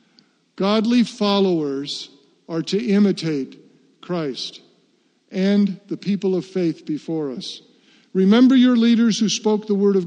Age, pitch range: 50-69, 180-220 Hz